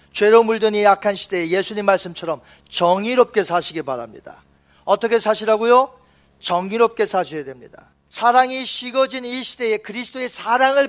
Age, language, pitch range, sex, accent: 40-59, Korean, 195-250 Hz, male, native